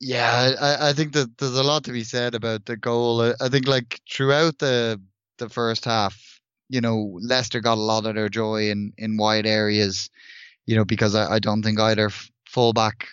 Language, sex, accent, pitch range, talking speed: English, male, Irish, 110-130 Hz, 205 wpm